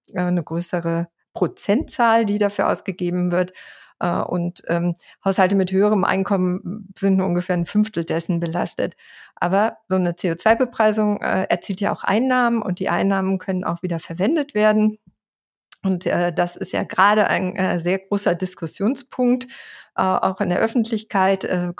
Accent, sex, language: German, female, German